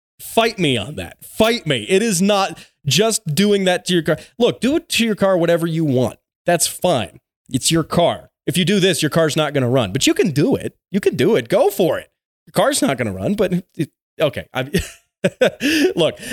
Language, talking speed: English, 225 wpm